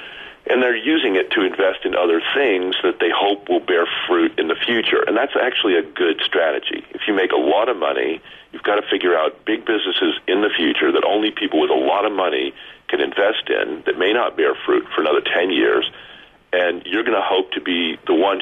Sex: male